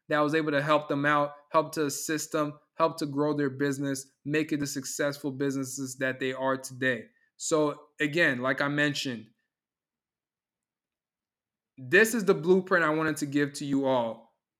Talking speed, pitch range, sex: 170 wpm, 145-160 Hz, male